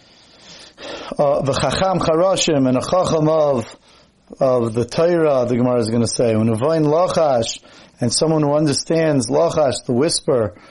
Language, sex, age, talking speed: English, male, 30-49, 145 wpm